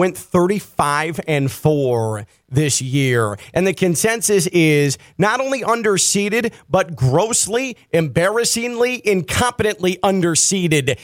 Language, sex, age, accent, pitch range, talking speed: English, male, 30-49, American, 180-230 Hz, 100 wpm